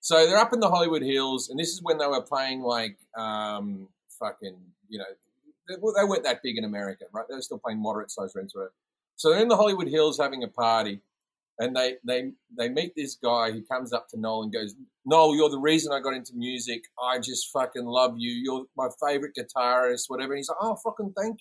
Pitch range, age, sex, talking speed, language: 140-225 Hz, 30-49, male, 225 wpm, English